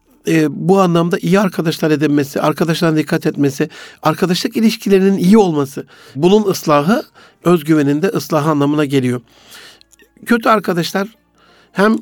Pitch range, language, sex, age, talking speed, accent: 165-200 Hz, Turkish, male, 60-79, 115 wpm, native